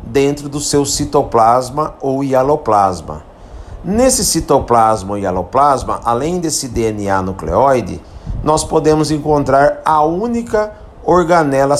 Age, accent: 50-69, Brazilian